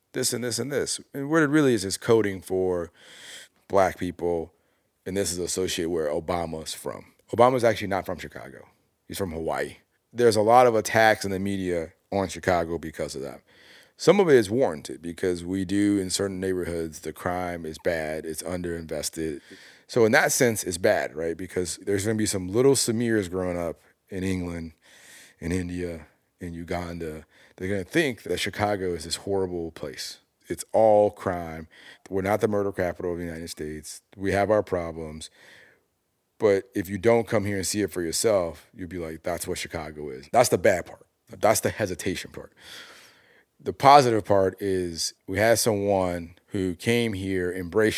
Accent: American